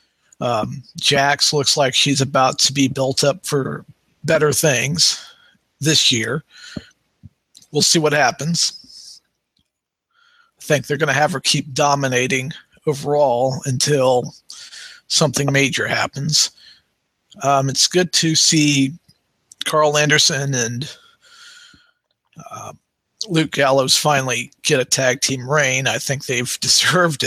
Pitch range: 135-160 Hz